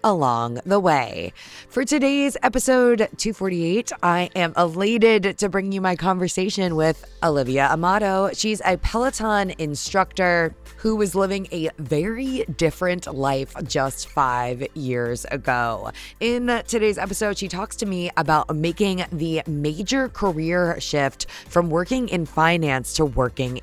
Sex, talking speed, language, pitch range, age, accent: female, 130 wpm, English, 145-190 Hz, 20-39, American